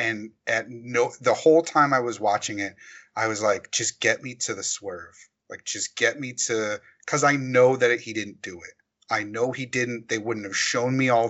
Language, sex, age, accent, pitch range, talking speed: English, male, 30-49, American, 110-135 Hz, 230 wpm